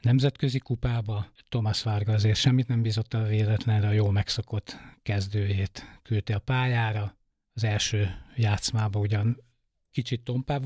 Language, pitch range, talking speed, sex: Hungarian, 105-125 Hz, 130 wpm, male